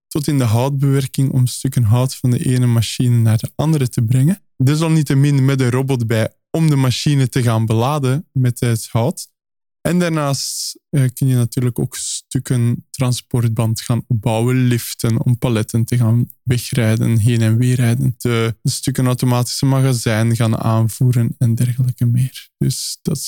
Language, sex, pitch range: Dutch, male, 120-140 Hz